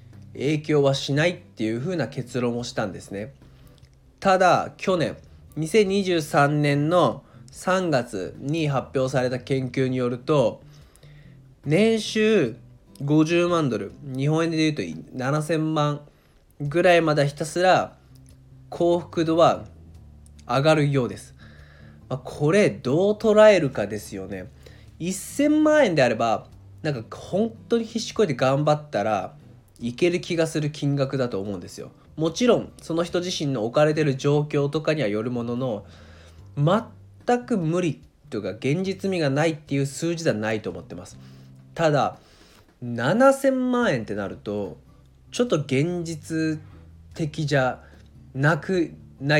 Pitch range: 110-165 Hz